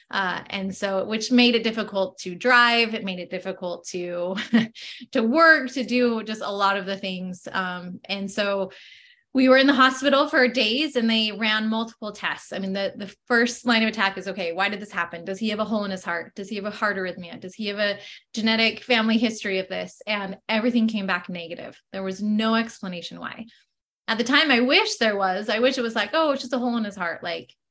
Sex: female